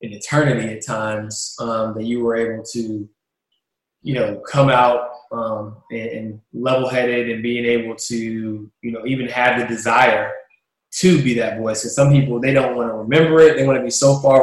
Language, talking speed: English, 195 wpm